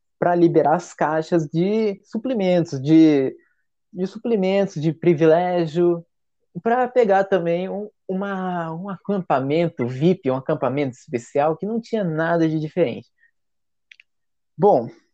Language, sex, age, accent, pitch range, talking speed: Portuguese, male, 20-39, Brazilian, 135-185 Hz, 115 wpm